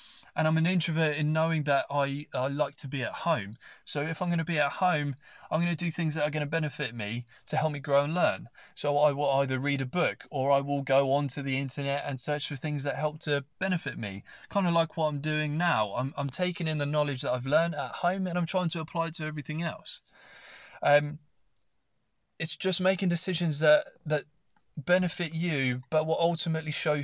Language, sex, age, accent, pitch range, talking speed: English, male, 20-39, British, 140-170 Hz, 225 wpm